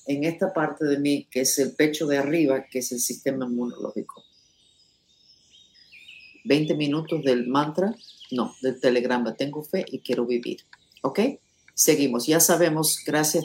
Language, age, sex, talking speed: English, 50-69, female, 145 wpm